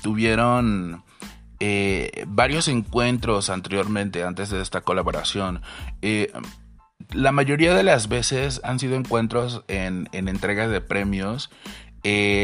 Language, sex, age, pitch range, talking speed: Spanish, male, 30-49, 95-120 Hz, 115 wpm